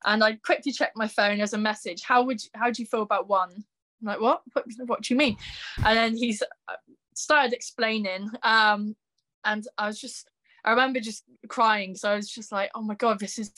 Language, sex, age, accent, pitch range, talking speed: English, female, 10-29, British, 205-235 Hz, 210 wpm